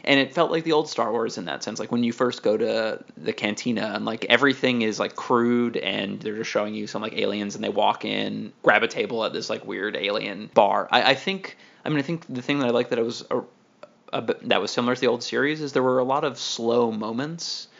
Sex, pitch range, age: male, 115-145 Hz, 20-39